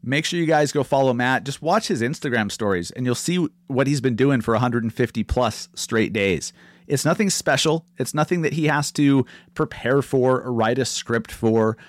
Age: 30-49